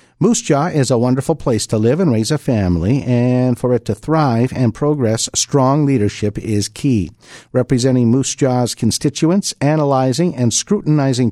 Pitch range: 105-140 Hz